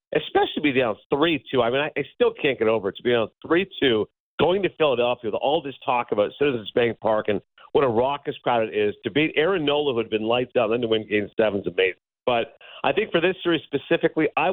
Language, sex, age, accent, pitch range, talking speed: English, male, 50-69, American, 110-165 Hz, 240 wpm